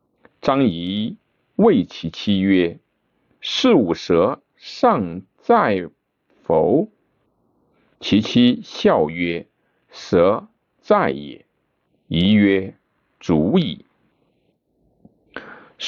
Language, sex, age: Chinese, male, 50-69